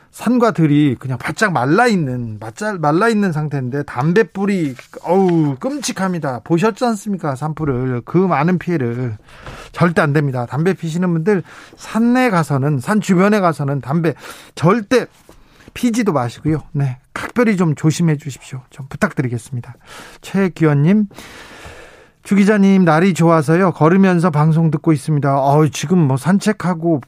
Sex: male